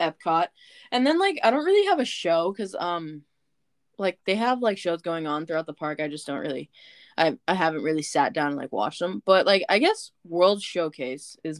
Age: 10-29